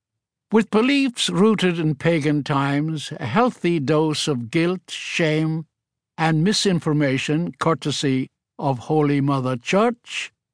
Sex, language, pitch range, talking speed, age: male, English, 140-180 Hz, 110 wpm, 60-79